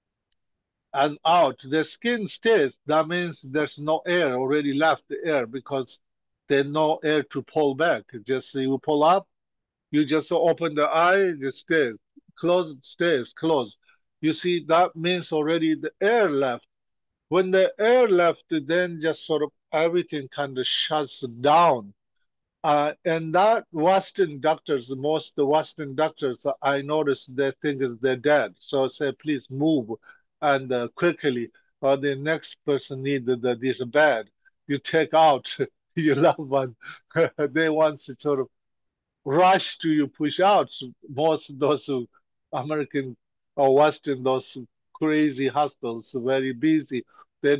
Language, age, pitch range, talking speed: English, 50-69, 135-160 Hz, 145 wpm